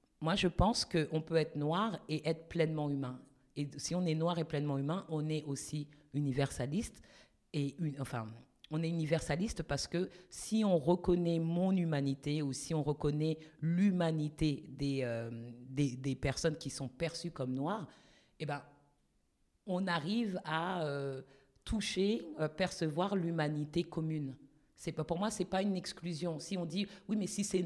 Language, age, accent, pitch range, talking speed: French, 50-69, French, 140-170 Hz, 165 wpm